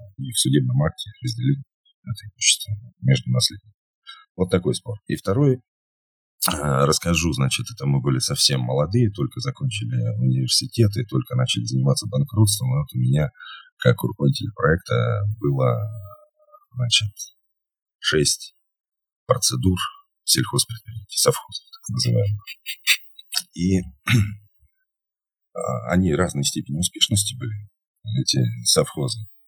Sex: male